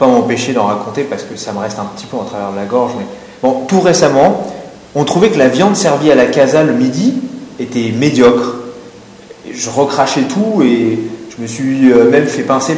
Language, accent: French, French